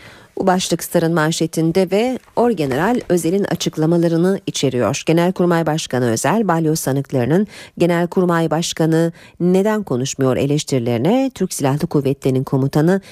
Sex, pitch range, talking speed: female, 145-200 Hz, 100 wpm